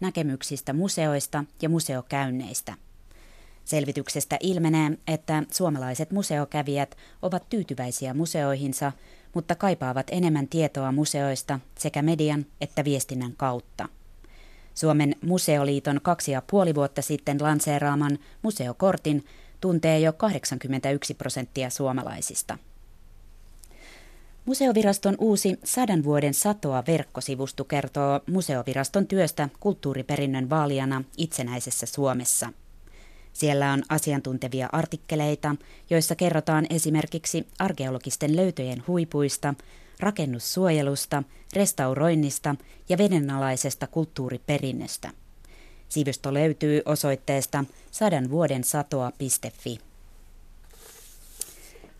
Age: 20-39